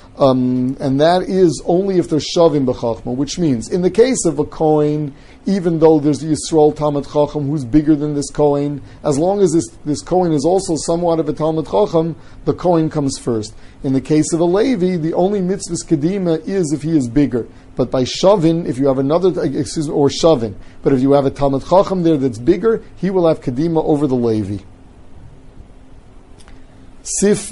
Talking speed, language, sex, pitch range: 195 wpm, English, male, 130-165 Hz